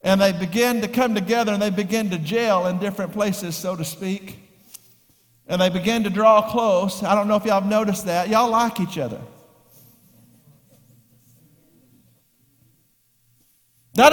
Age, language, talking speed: 50-69, English, 155 wpm